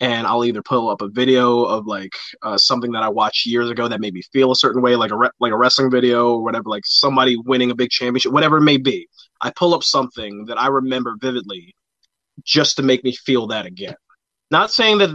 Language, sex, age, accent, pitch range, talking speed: English, male, 20-39, American, 120-145 Hz, 240 wpm